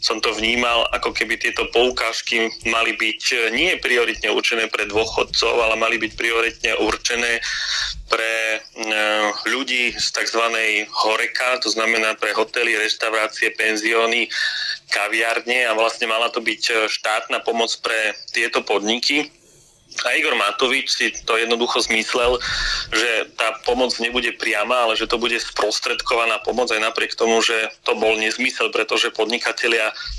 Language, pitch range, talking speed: Slovak, 110-120 Hz, 135 wpm